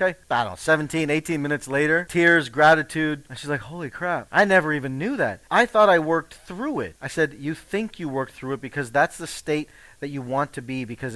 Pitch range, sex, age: 115-175 Hz, male, 40-59